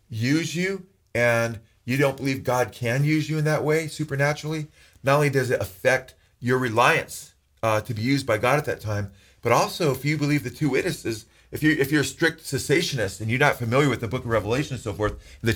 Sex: male